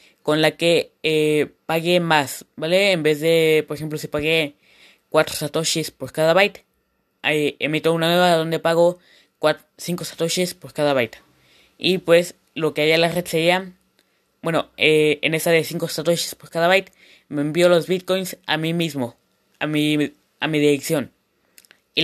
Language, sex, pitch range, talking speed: Spanish, female, 150-170 Hz, 170 wpm